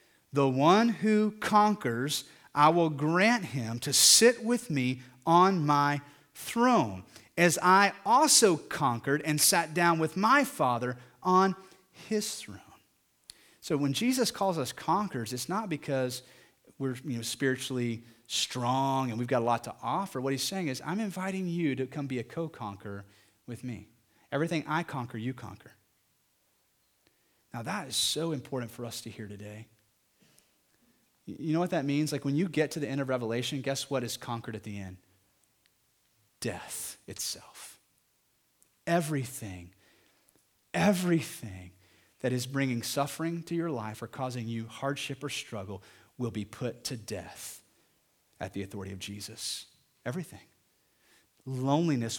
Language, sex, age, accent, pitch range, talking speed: English, male, 30-49, American, 115-160 Hz, 145 wpm